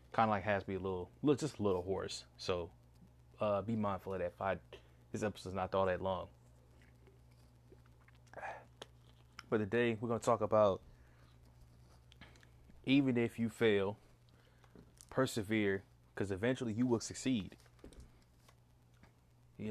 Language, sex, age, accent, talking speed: English, male, 20-39, American, 135 wpm